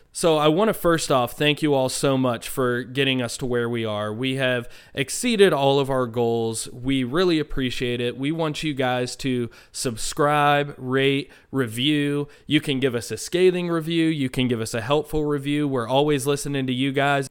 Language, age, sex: English, 20-39, male